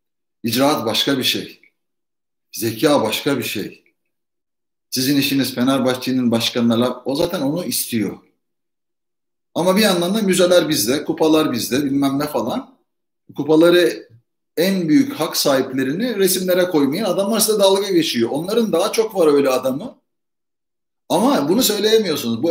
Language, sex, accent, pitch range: Turkish, male, native, 120-175 Hz